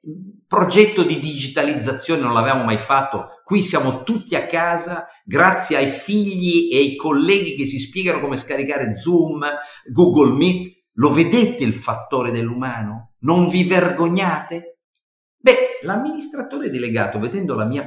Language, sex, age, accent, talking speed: Italian, male, 50-69, native, 135 wpm